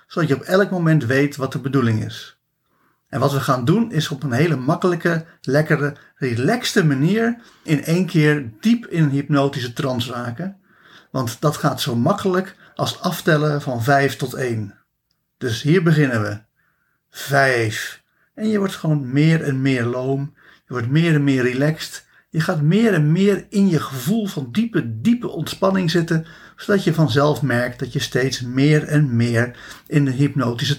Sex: male